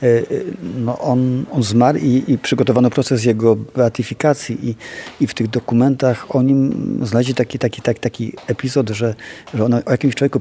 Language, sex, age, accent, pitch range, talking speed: Polish, male, 40-59, native, 110-130 Hz, 165 wpm